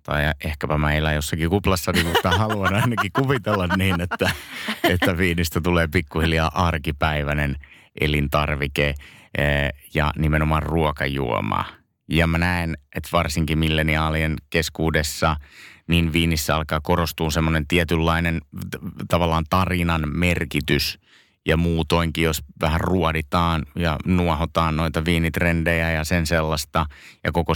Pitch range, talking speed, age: 75-85 Hz, 110 wpm, 30-49